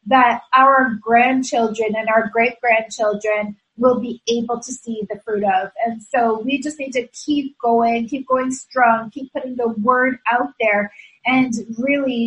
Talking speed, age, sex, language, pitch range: 160 wpm, 30-49, female, English, 225-270 Hz